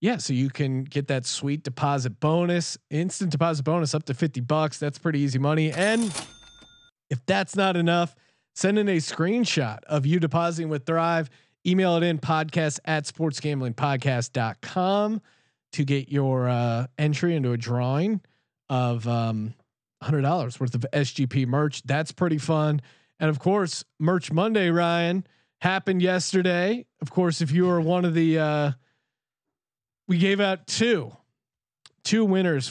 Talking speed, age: 150 wpm, 30-49